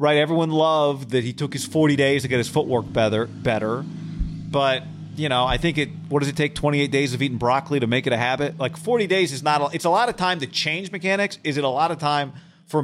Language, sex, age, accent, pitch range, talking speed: English, male, 40-59, American, 120-155 Hz, 255 wpm